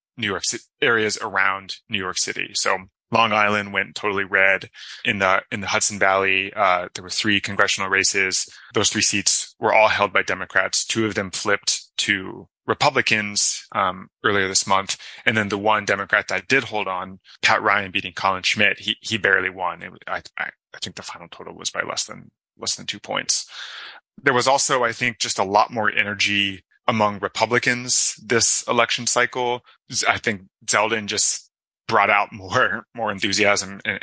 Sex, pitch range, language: male, 95-110 Hz, English